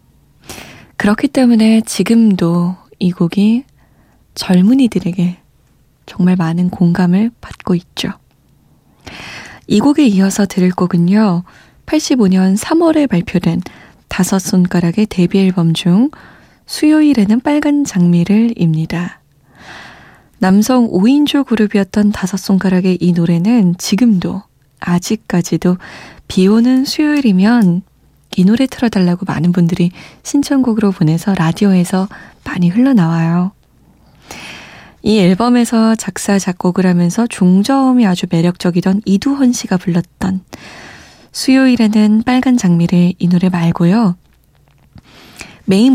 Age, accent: 20-39, native